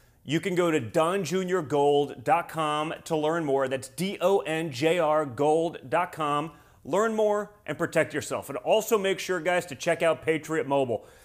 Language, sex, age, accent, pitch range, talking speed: English, male, 30-49, American, 145-180 Hz, 135 wpm